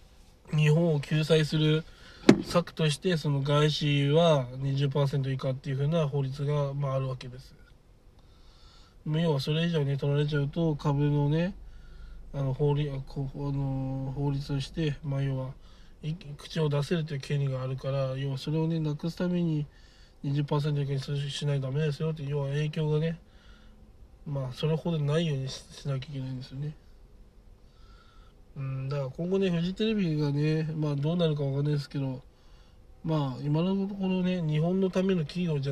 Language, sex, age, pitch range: Japanese, male, 20-39, 135-160 Hz